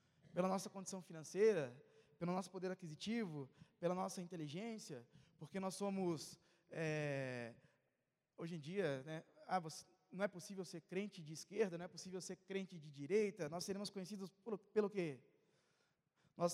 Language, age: Portuguese, 20-39